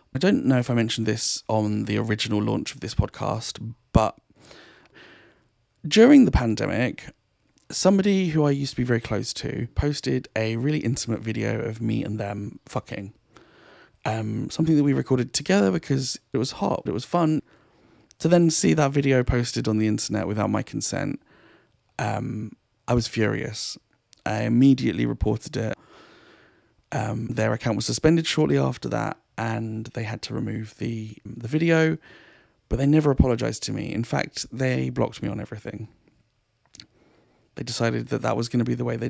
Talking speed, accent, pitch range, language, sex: 170 wpm, British, 110-140 Hz, English, male